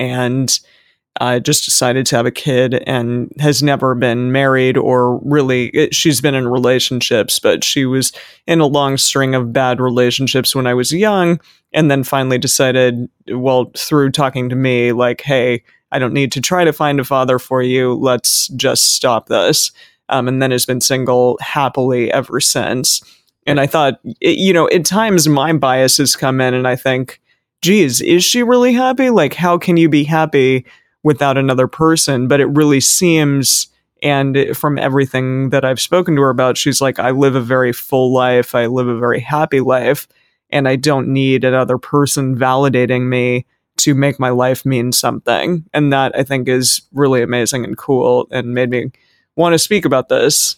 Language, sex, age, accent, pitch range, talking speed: English, male, 30-49, American, 125-145 Hz, 185 wpm